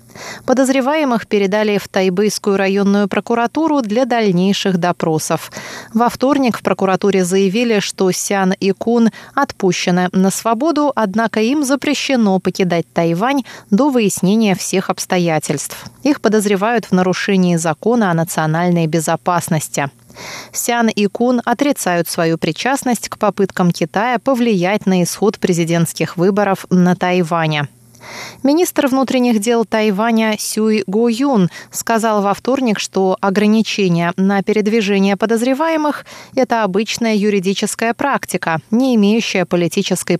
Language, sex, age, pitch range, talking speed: Russian, female, 20-39, 180-235 Hz, 115 wpm